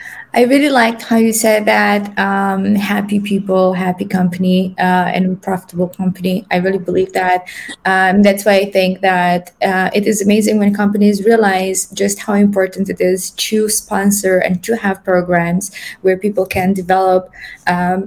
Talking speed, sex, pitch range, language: 165 wpm, female, 185-205 Hz, Romanian